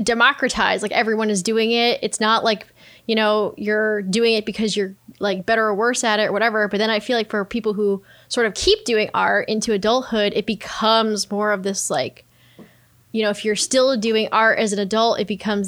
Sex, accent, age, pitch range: female, American, 10-29, 210-255 Hz